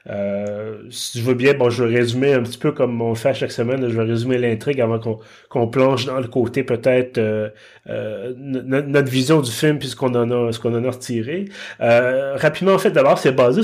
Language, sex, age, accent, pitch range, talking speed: French, male, 30-49, Canadian, 115-140 Hz, 235 wpm